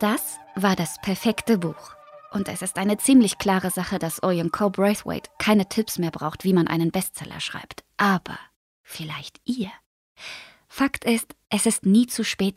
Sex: female